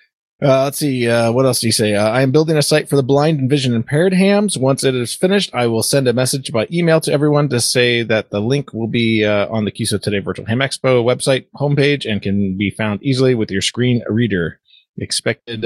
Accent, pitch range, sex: American, 105-140 Hz, male